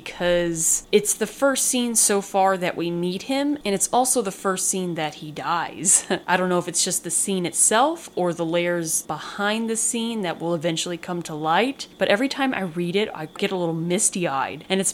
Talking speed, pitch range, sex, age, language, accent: 215 wpm, 165-200 Hz, female, 20-39, English, American